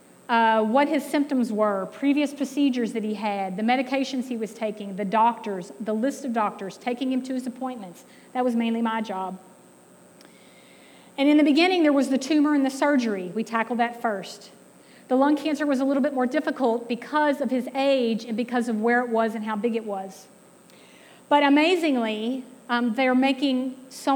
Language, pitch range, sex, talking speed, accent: English, 220-275 Hz, female, 190 wpm, American